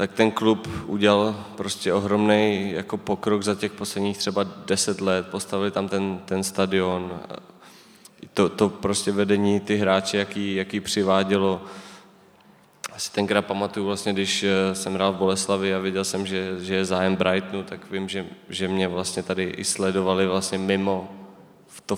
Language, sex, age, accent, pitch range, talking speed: Czech, male, 20-39, native, 95-100 Hz, 160 wpm